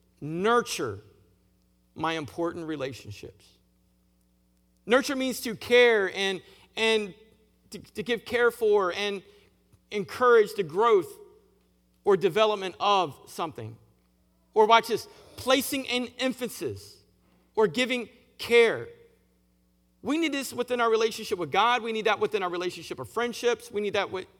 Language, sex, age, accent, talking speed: English, male, 40-59, American, 130 wpm